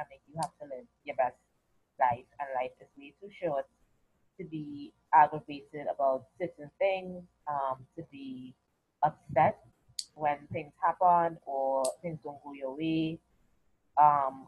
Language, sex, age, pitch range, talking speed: English, female, 20-39, 140-170 Hz, 145 wpm